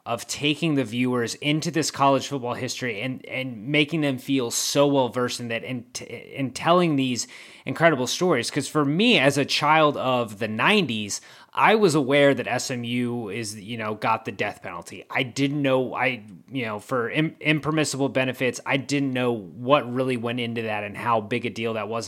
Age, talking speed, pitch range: 30-49, 195 wpm, 120-145 Hz